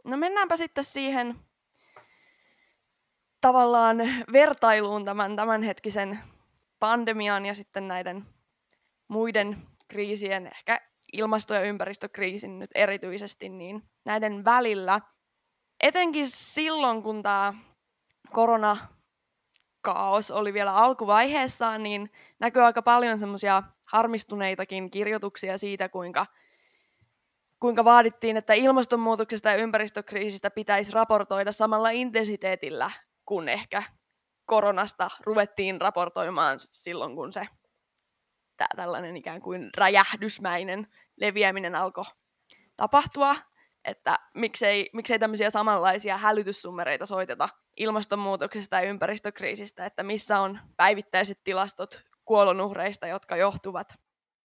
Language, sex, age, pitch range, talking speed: Finnish, female, 20-39, 195-225 Hz, 95 wpm